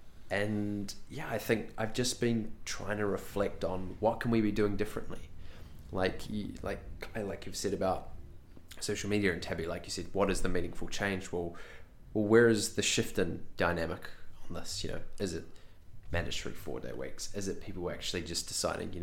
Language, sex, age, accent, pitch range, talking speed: English, male, 20-39, Australian, 85-105 Hz, 195 wpm